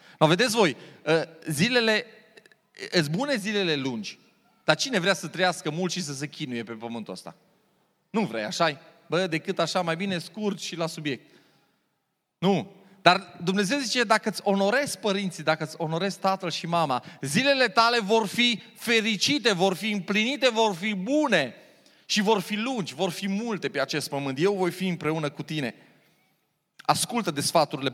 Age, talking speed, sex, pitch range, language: 30-49, 165 wpm, male, 160-215 Hz, Romanian